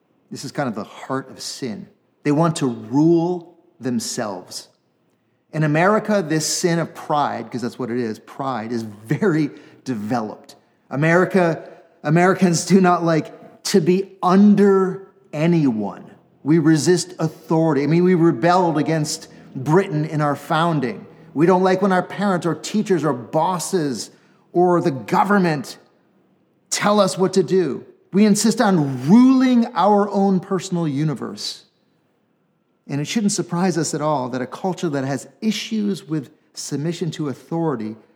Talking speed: 145 wpm